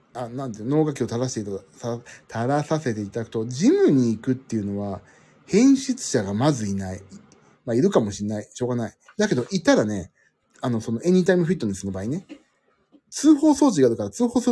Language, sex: Japanese, male